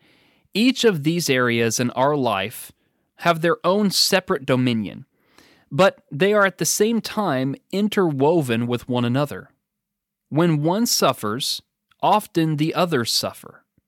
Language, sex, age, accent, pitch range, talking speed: English, male, 30-49, American, 125-180 Hz, 130 wpm